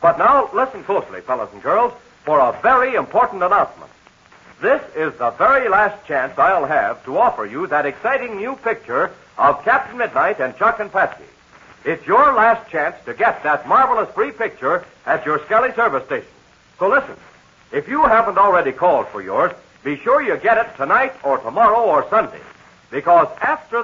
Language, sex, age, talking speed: English, male, 60-79, 175 wpm